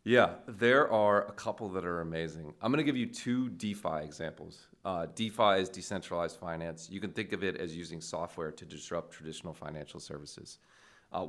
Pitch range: 80-105 Hz